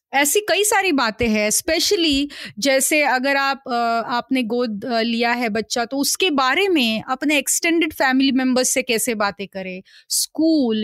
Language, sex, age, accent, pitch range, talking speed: Hindi, female, 30-49, native, 240-310 Hz, 150 wpm